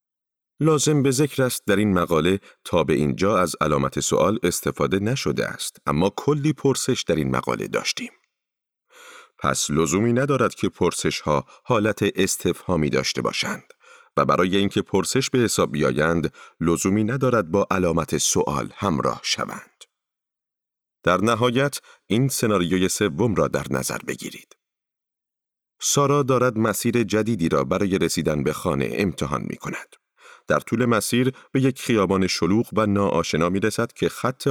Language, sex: Persian, male